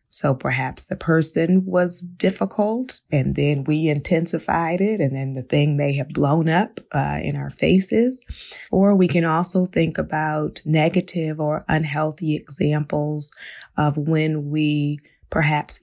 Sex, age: female, 20-39